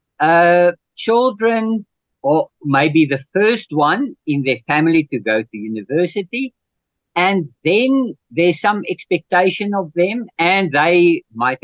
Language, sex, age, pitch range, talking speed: English, male, 50-69, 140-185 Hz, 125 wpm